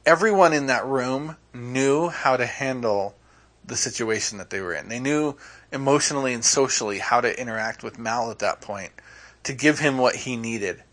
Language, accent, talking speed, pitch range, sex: English, American, 180 wpm, 100-145 Hz, male